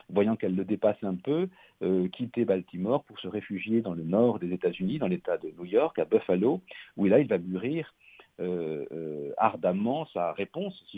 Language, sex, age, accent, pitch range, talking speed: French, male, 50-69, French, 90-115 Hz, 190 wpm